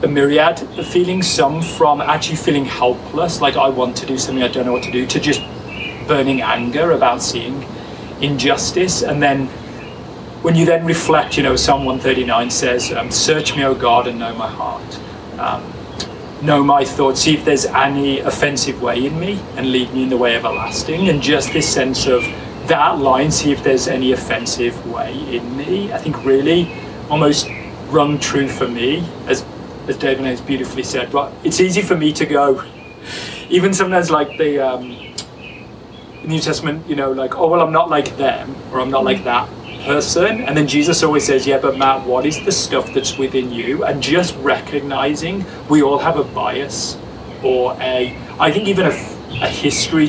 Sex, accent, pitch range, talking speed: male, British, 130-155 Hz, 185 wpm